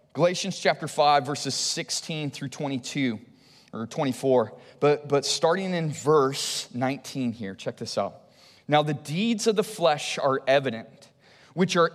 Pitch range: 135-190 Hz